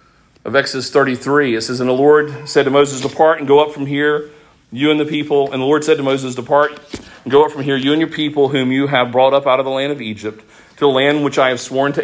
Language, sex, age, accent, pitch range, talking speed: English, male, 40-59, American, 115-140 Hz, 280 wpm